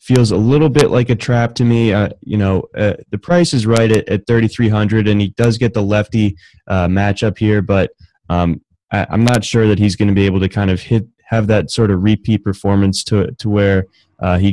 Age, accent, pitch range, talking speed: 20-39, American, 95-105 Hz, 240 wpm